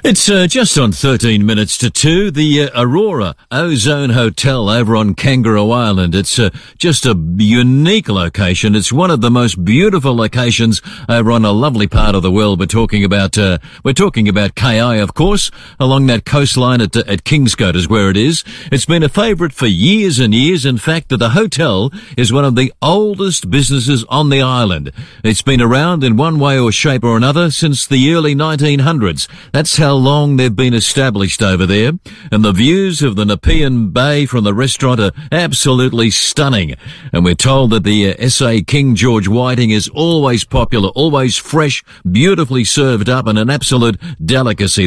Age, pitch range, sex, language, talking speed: 50-69, 110-150 Hz, male, English, 185 wpm